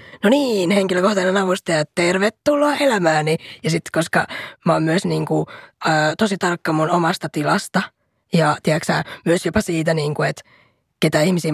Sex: female